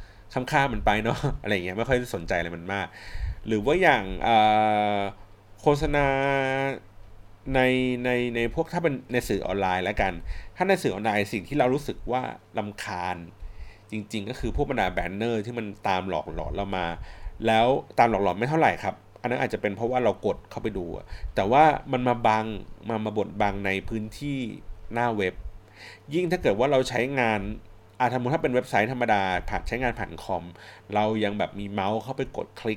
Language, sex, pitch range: Thai, male, 100-125 Hz